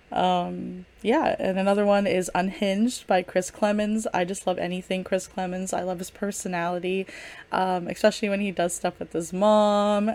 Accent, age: American, 10-29